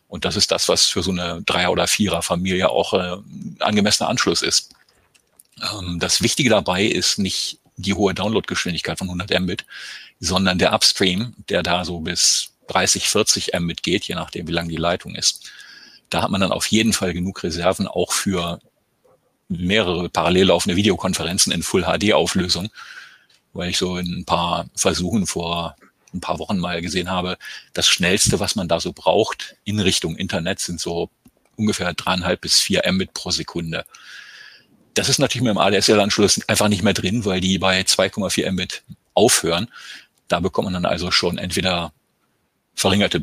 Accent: German